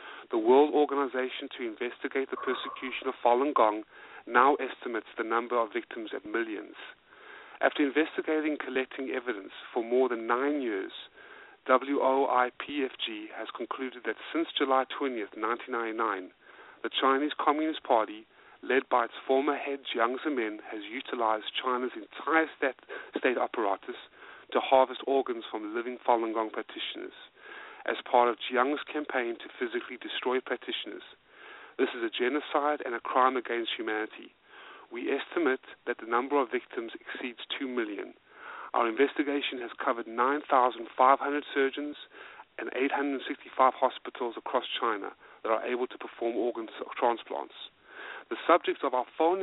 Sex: male